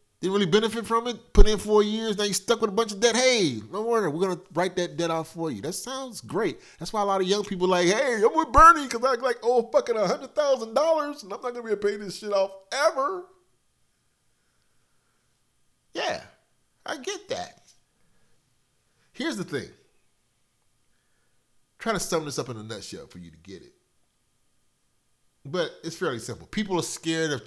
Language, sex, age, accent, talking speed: English, male, 30-49, American, 205 wpm